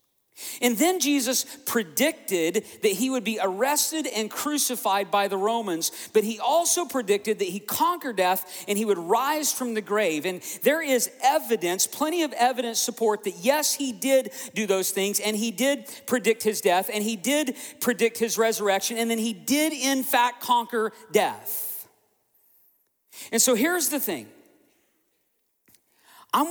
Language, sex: English, male